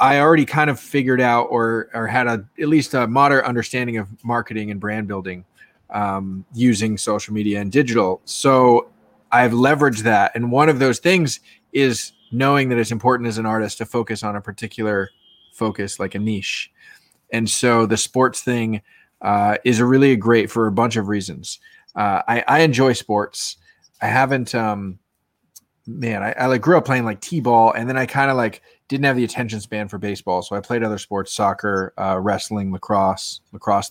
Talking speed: 190 wpm